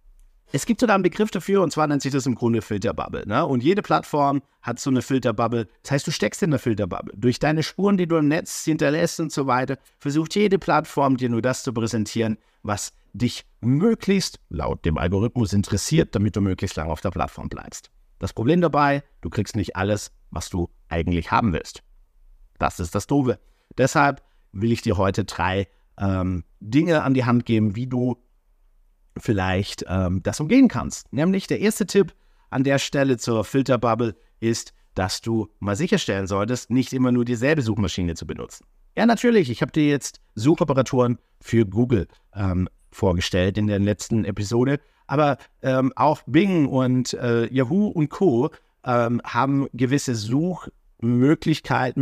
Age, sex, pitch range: 50-69, male, 105-145 Hz